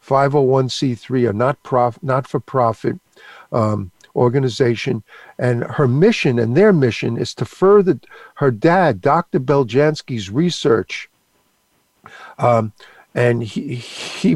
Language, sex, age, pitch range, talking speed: English, male, 50-69, 120-150 Hz, 105 wpm